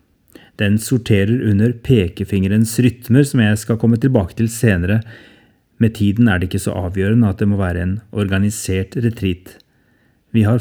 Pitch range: 100-115 Hz